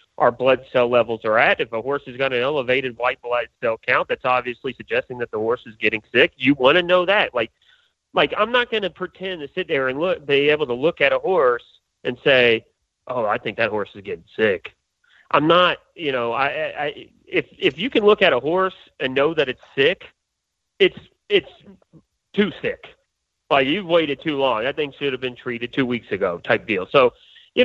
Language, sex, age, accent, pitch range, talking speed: English, male, 40-59, American, 120-185 Hz, 220 wpm